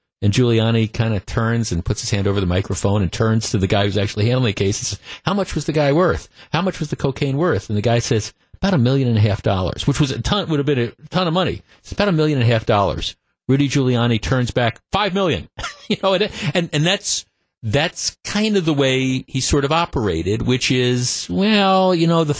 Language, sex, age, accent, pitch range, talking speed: English, male, 50-69, American, 110-150 Hz, 245 wpm